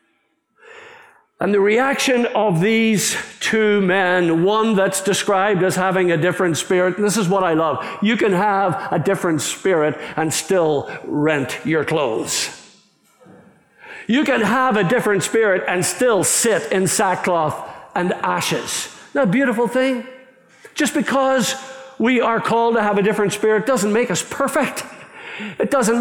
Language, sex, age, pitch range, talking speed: English, male, 60-79, 190-250 Hz, 150 wpm